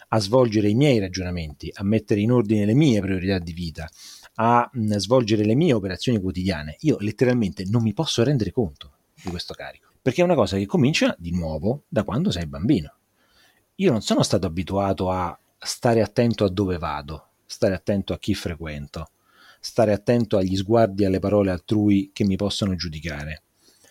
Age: 30-49